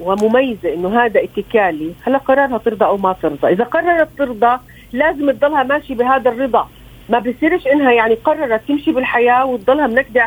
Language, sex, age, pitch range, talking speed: Arabic, female, 40-59, 220-275 Hz, 160 wpm